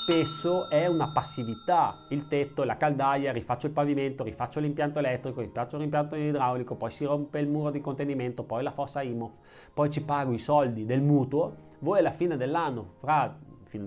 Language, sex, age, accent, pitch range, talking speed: Italian, male, 30-49, native, 110-145 Hz, 175 wpm